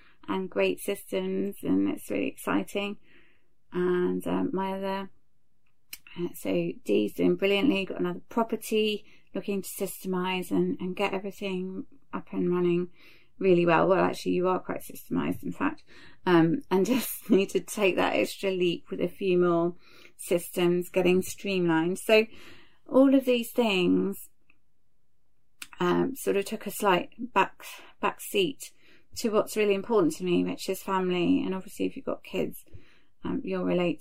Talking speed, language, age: 155 wpm, English, 30-49